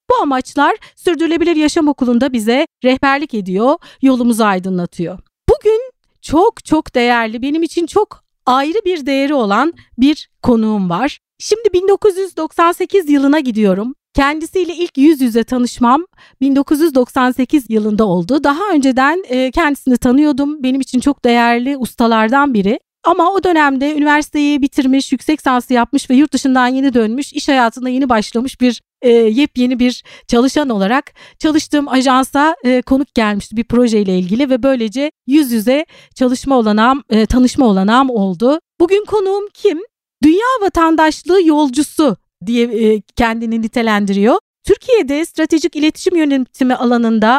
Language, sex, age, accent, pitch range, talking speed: Turkish, female, 40-59, native, 240-310 Hz, 130 wpm